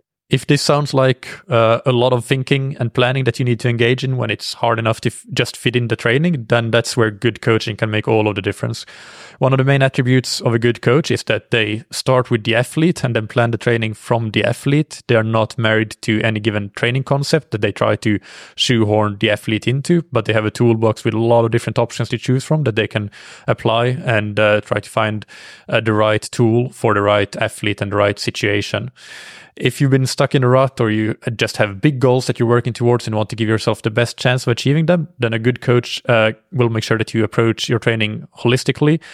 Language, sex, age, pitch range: English, male, 20-39, 110-130 Hz